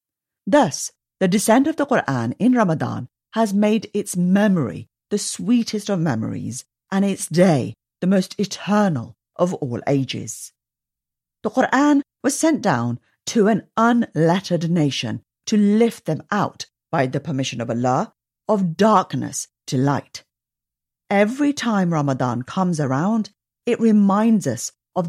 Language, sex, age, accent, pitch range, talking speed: English, female, 40-59, British, 135-210 Hz, 135 wpm